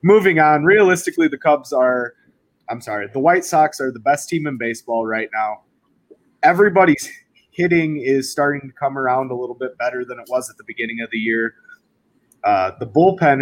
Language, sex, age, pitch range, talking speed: English, male, 20-39, 125-155 Hz, 190 wpm